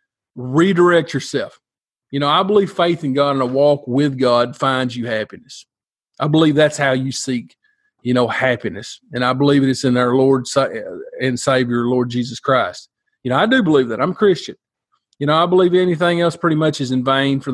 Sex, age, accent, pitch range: male, 40-59, American, 135-170 Hz